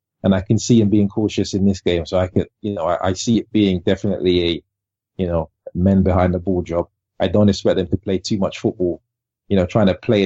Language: English